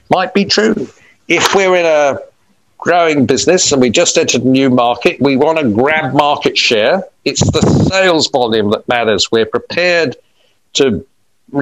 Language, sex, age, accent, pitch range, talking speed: English, male, 50-69, British, 115-180 Hz, 165 wpm